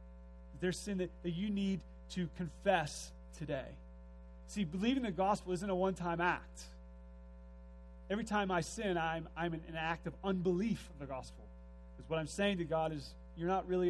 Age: 30-49